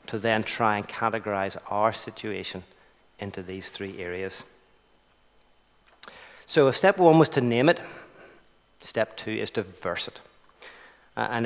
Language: English